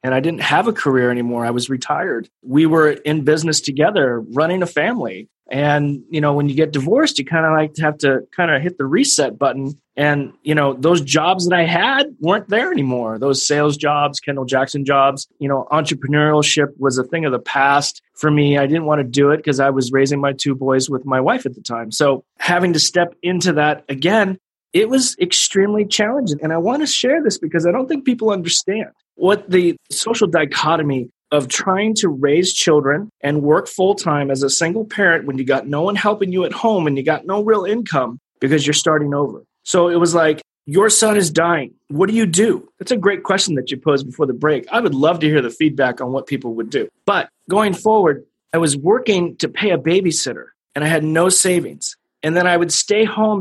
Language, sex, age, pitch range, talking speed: English, male, 30-49, 140-185 Hz, 225 wpm